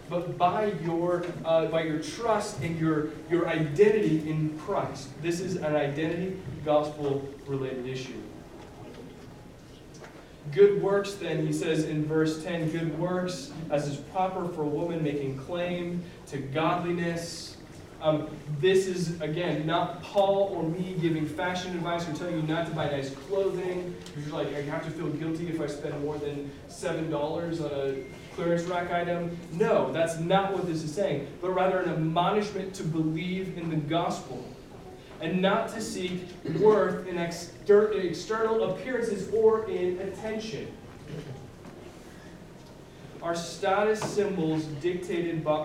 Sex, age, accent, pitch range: male, 20-39, American, 155-185 Hz